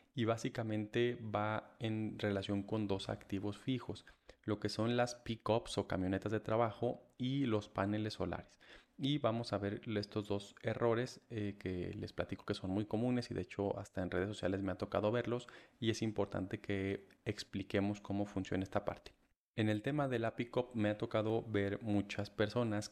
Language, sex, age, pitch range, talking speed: Spanish, male, 30-49, 100-115 Hz, 180 wpm